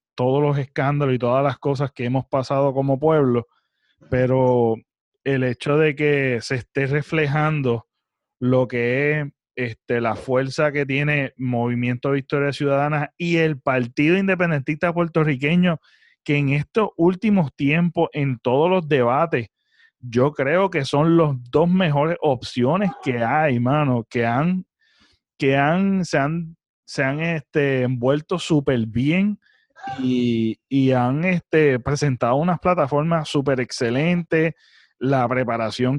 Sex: male